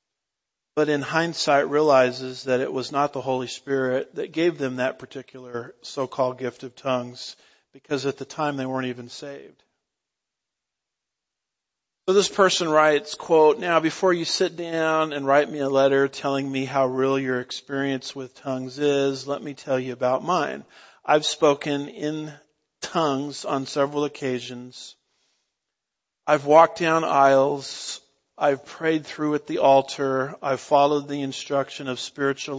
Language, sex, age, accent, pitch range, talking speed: English, male, 50-69, American, 130-150 Hz, 150 wpm